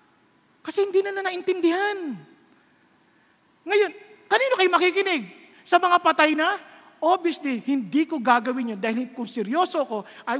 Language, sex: English, male